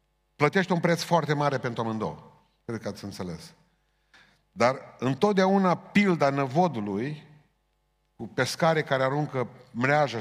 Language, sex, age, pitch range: Romanian, male, 50-69, 115-150 Hz